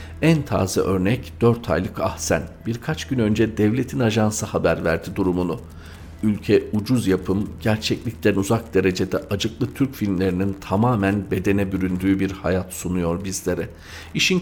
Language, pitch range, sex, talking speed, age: Turkish, 90-115 Hz, male, 130 wpm, 50-69